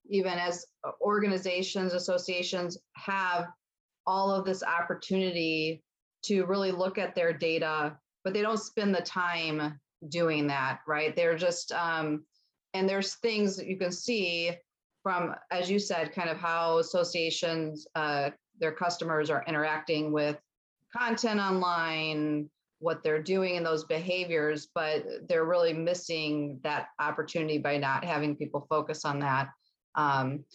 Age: 30-49